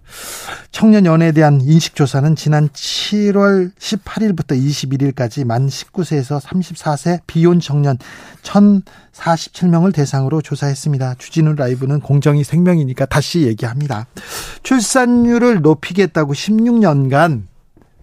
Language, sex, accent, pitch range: Korean, male, native, 140-185 Hz